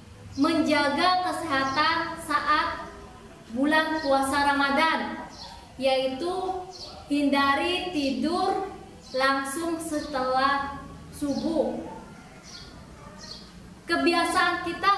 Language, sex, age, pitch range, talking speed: Indonesian, female, 20-39, 270-340 Hz, 55 wpm